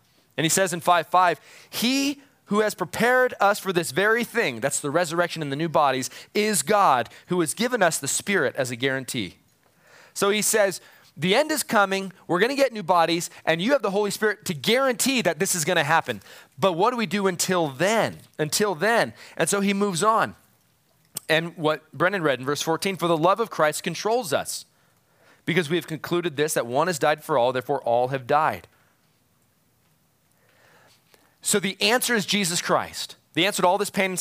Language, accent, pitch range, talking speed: English, American, 150-205 Hz, 200 wpm